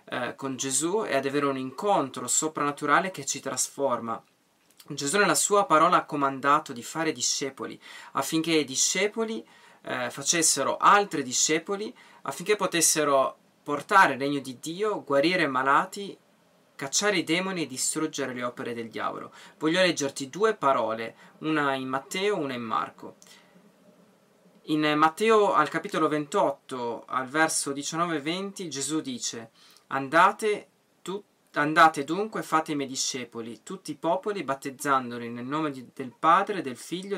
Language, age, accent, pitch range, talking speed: Italian, 20-39, native, 135-180 Hz, 140 wpm